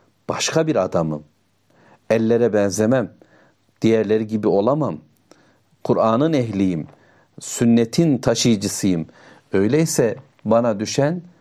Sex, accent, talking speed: male, native, 80 wpm